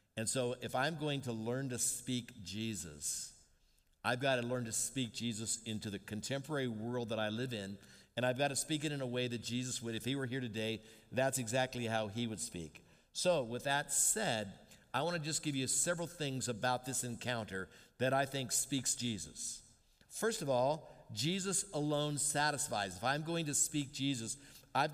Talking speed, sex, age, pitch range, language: 195 wpm, male, 50-69, 120-150 Hz, English